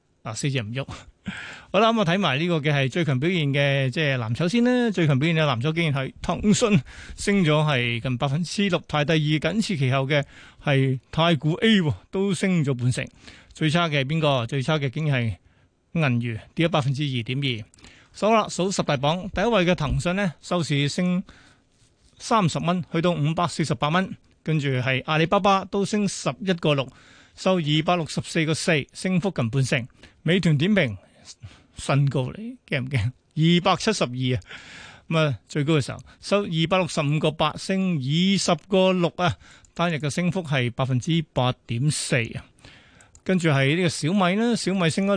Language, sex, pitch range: Chinese, male, 135-180 Hz